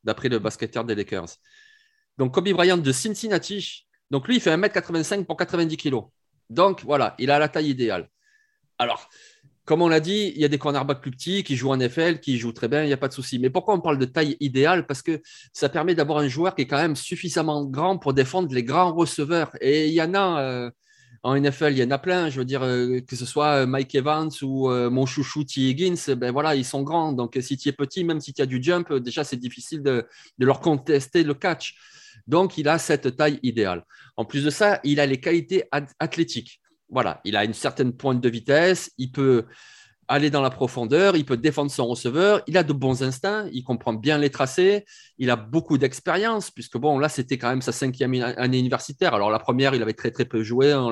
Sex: male